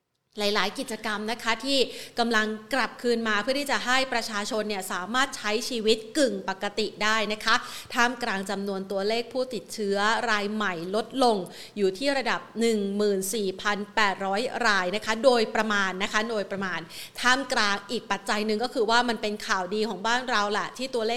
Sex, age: female, 30-49